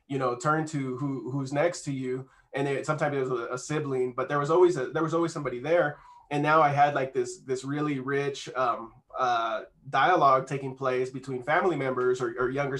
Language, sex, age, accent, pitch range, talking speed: English, male, 20-39, American, 130-155 Hz, 215 wpm